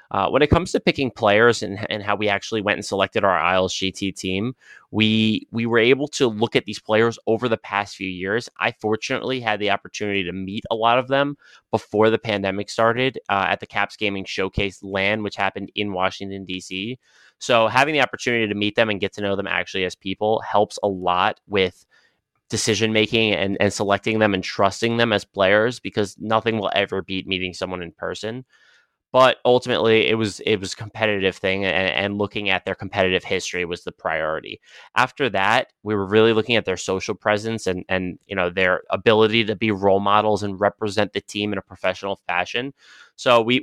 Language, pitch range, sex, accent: English, 95-110 Hz, male, American